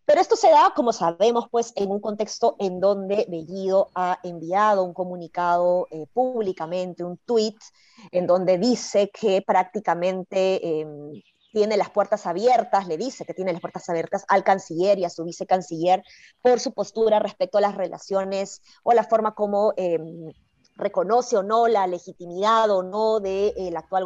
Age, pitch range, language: 30-49, 175-215 Hz, Spanish